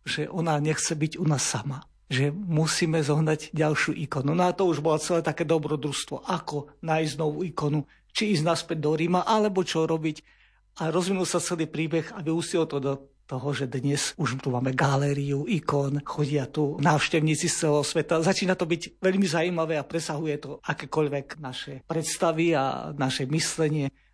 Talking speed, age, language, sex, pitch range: 170 wpm, 50-69, Slovak, male, 145-170 Hz